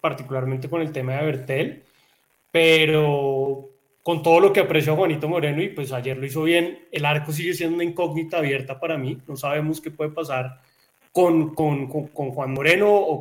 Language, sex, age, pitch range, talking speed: Spanish, male, 30-49, 145-175 Hz, 190 wpm